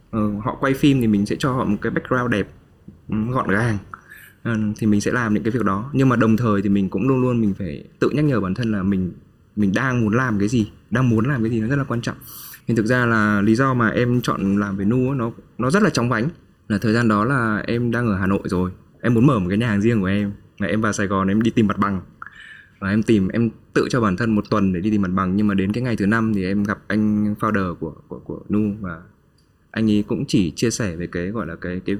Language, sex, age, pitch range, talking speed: Vietnamese, male, 20-39, 100-120 Hz, 280 wpm